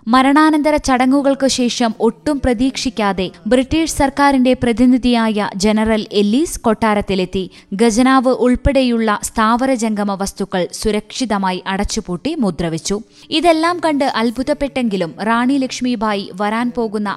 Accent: native